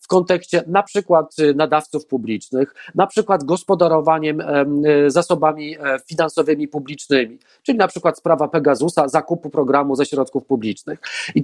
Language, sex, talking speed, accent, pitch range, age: Polish, male, 120 wpm, native, 150-185 Hz, 40-59